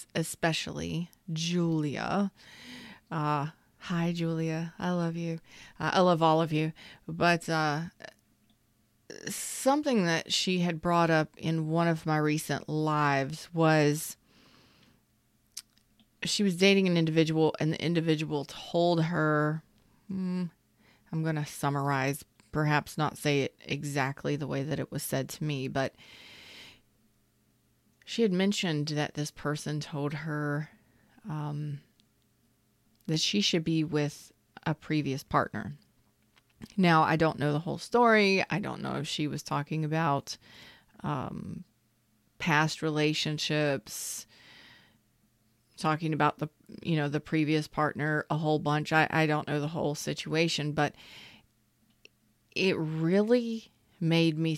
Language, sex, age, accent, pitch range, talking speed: English, female, 30-49, American, 145-165 Hz, 130 wpm